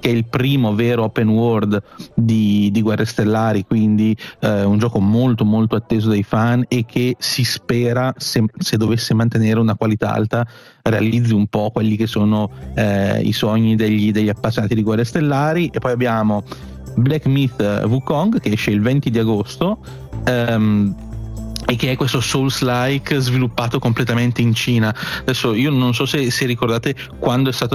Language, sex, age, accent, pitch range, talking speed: Italian, male, 30-49, native, 110-130 Hz, 170 wpm